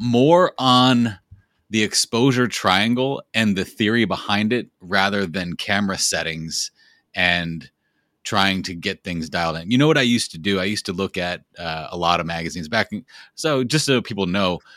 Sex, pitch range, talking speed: male, 85-115 Hz, 180 wpm